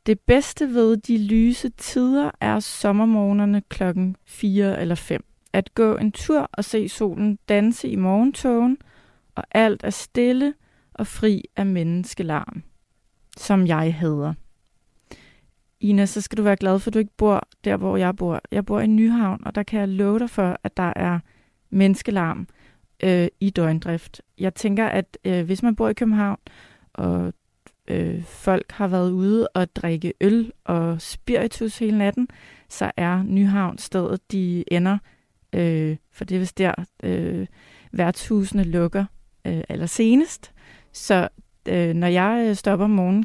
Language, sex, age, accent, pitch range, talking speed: Danish, female, 30-49, native, 175-215 Hz, 150 wpm